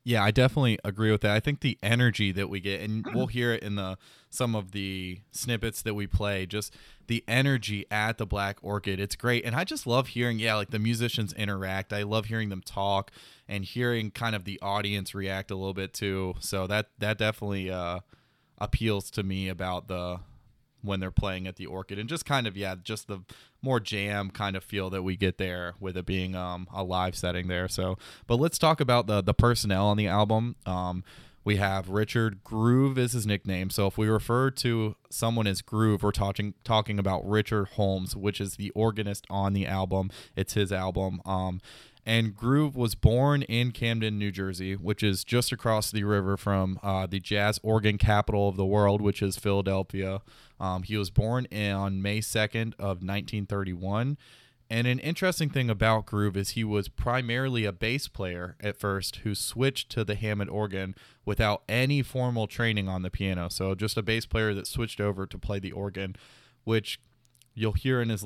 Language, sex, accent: English, male, American